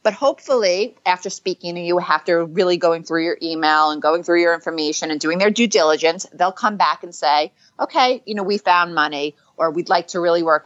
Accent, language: American, English